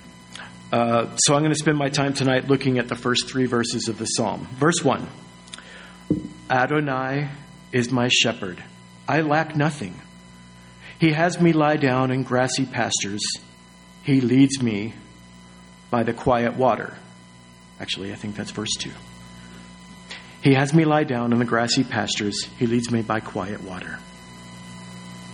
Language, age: English, 40-59